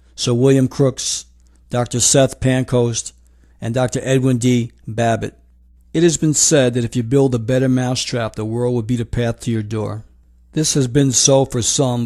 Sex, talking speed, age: male, 185 wpm, 60-79